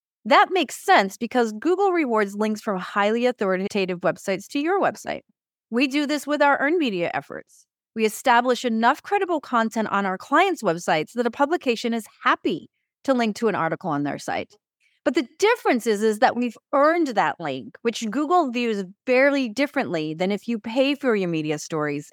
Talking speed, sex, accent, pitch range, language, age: 180 wpm, female, American, 185-255 Hz, English, 30-49